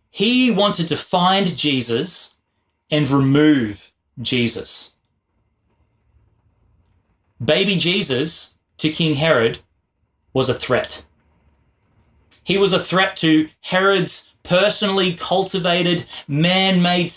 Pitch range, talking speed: 120-185 Hz, 85 wpm